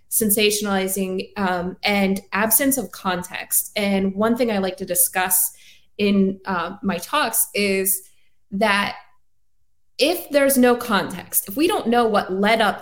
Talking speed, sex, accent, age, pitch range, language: 140 wpm, female, American, 20-39, 190-235 Hz, English